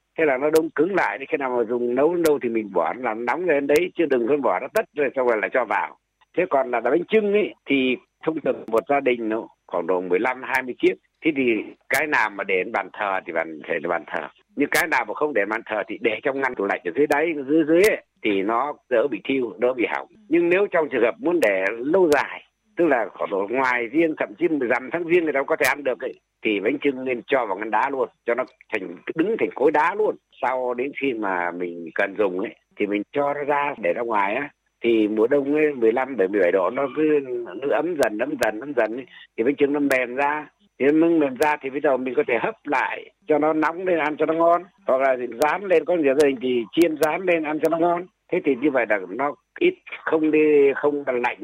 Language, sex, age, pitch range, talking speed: Vietnamese, male, 60-79, 130-195 Hz, 260 wpm